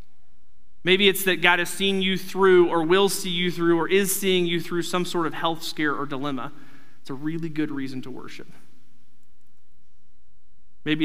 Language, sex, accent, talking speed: English, male, American, 180 wpm